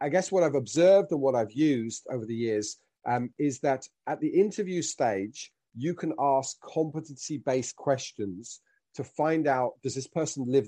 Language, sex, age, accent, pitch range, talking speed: English, male, 40-59, British, 135-195 Hz, 175 wpm